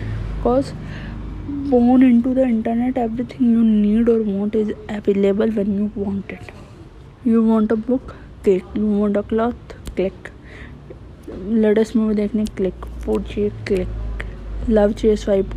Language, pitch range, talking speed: Hindi, 185-225 Hz, 135 wpm